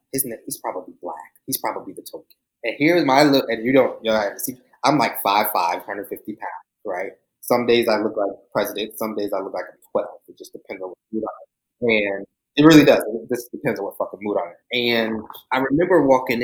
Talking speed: 240 wpm